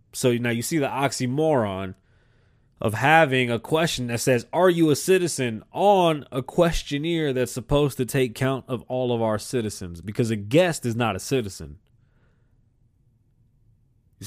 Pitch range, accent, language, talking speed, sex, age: 115-140 Hz, American, English, 155 wpm, male, 30-49